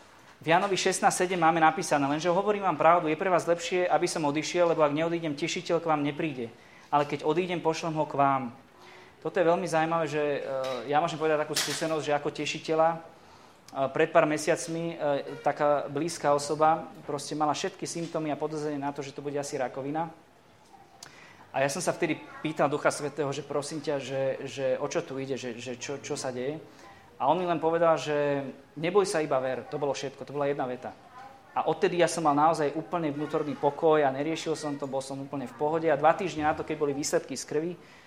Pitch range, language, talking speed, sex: 140-165 Hz, Slovak, 205 wpm, male